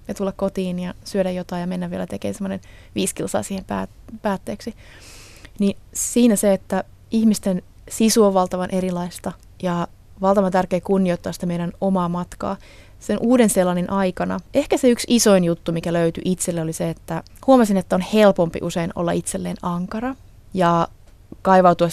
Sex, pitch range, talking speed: female, 165-195 Hz, 155 wpm